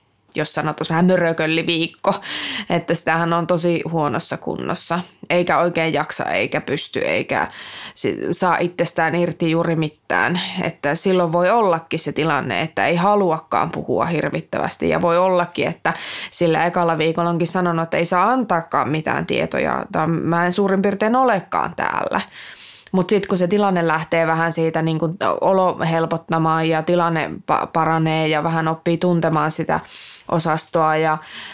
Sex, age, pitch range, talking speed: female, 20-39, 160-180 Hz, 140 wpm